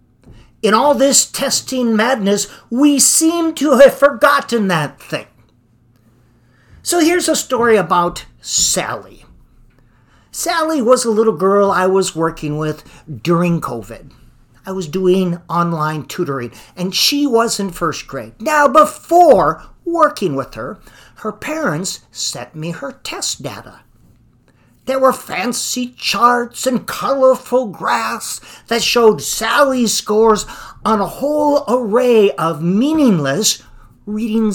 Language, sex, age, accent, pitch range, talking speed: English, male, 50-69, American, 160-260 Hz, 120 wpm